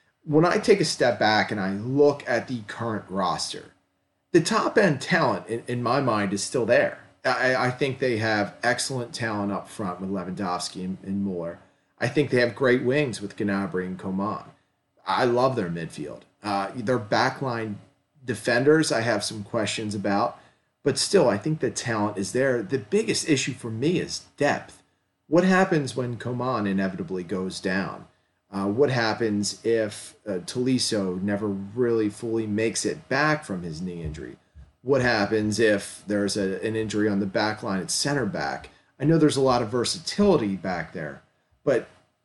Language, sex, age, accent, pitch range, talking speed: English, male, 40-59, American, 100-130 Hz, 175 wpm